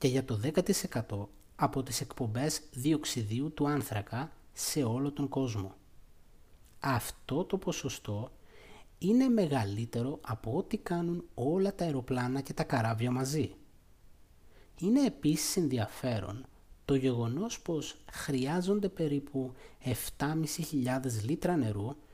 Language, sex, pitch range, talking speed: Greek, male, 120-170 Hz, 110 wpm